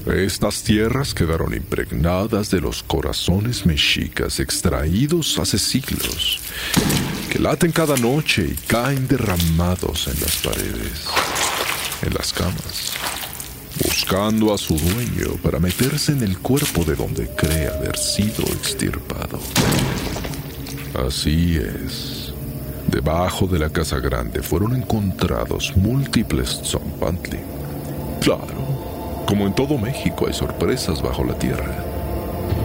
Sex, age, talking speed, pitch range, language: male, 50-69, 110 wpm, 75-105 Hz, Spanish